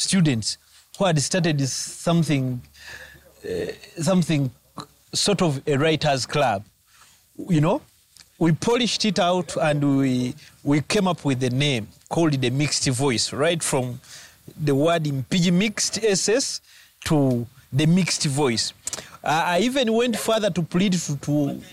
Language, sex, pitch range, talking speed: English, male, 135-180 Hz, 145 wpm